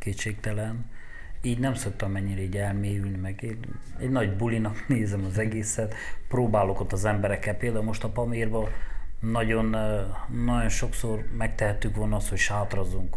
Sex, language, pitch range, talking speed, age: male, Hungarian, 105-135 Hz, 130 wpm, 30-49